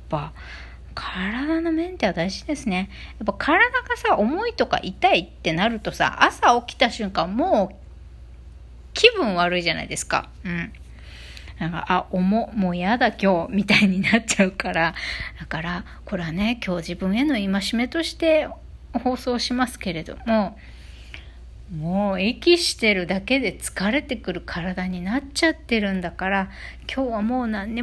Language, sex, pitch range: Japanese, female, 185-265 Hz